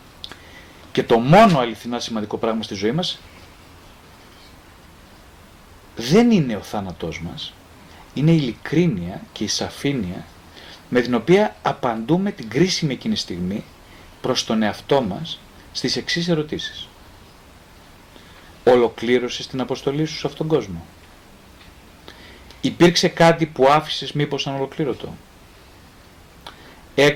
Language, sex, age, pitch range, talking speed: Greek, male, 40-59, 90-140 Hz, 110 wpm